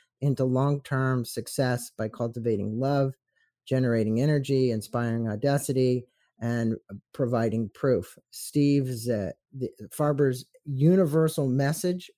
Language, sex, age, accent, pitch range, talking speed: English, male, 50-69, American, 120-145 Hz, 90 wpm